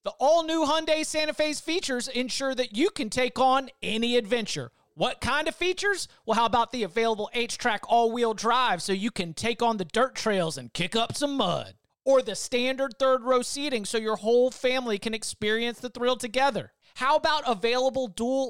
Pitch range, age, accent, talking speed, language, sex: 225-275 Hz, 30-49, American, 185 wpm, English, male